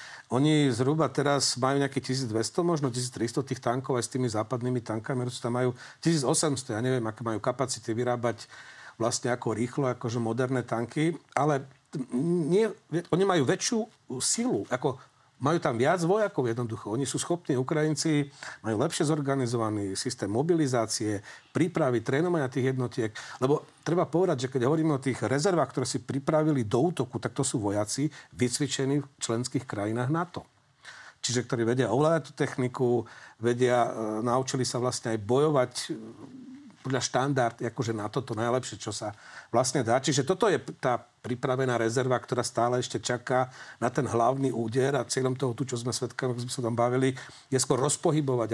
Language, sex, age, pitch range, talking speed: Slovak, male, 40-59, 120-155 Hz, 160 wpm